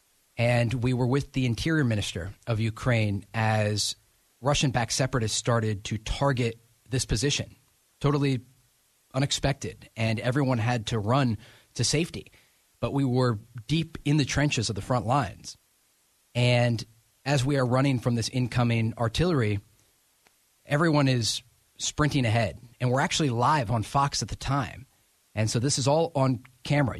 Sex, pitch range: male, 110-130 Hz